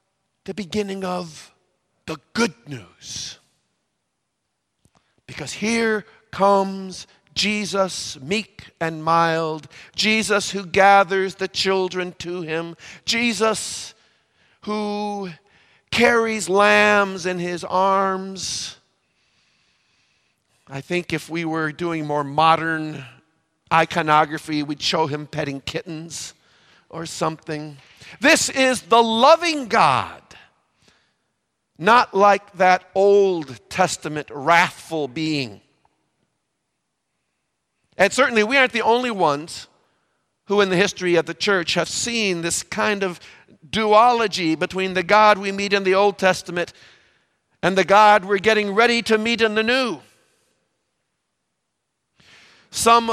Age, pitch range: 50-69, 160-210 Hz